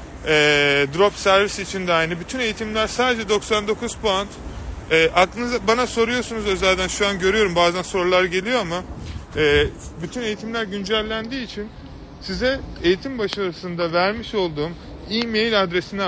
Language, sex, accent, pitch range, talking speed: Turkish, male, native, 165-210 Hz, 130 wpm